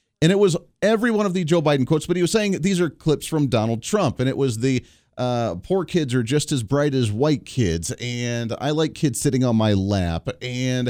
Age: 40-59